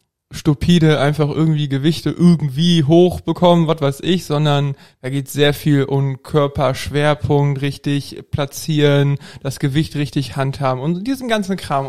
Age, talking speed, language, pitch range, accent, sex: 20-39, 130 wpm, German, 135-160 Hz, German, male